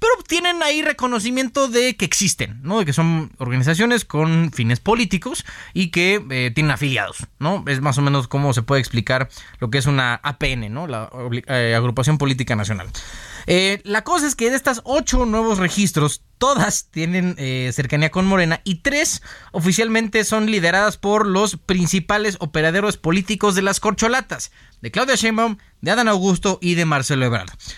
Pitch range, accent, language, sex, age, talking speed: 130-205 Hz, Mexican, Spanish, male, 20-39, 170 wpm